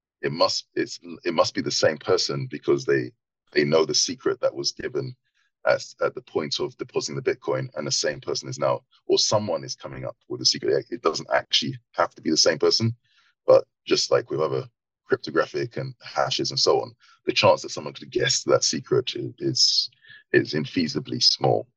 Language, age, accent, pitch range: English, 30-49, British, 275-445 Hz